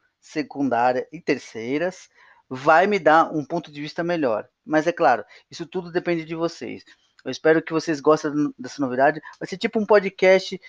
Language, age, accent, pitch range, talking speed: Portuguese, 20-39, Brazilian, 140-185 Hz, 175 wpm